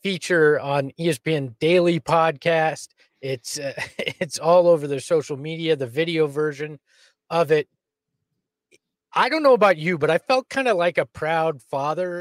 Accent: American